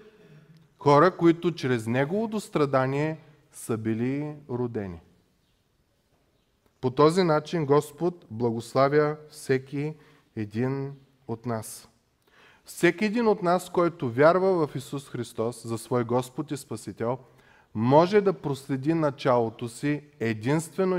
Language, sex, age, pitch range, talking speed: Bulgarian, male, 20-39, 130-175 Hz, 105 wpm